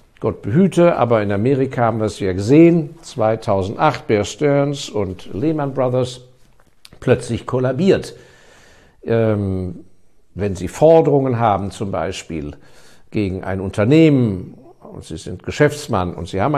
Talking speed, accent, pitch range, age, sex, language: 125 wpm, German, 100-140 Hz, 60-79, male, German